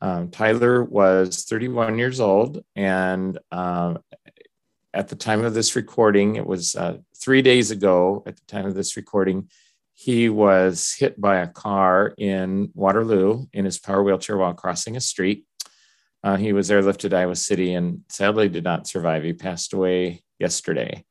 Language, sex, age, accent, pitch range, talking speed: English, male, 40-59, American, 95-110 Hz, 160 wpm